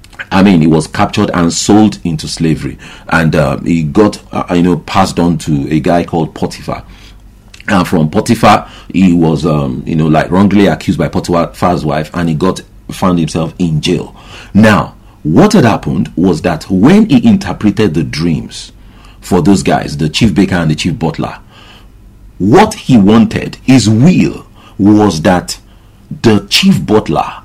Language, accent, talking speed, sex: English, Nigerian, 165 wpm, male